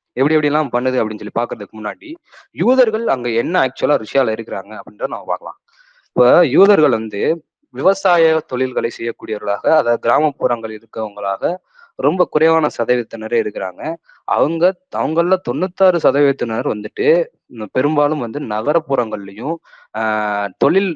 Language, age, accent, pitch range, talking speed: Tamil, 20-39, native, 110-165 Hz, 110 wpm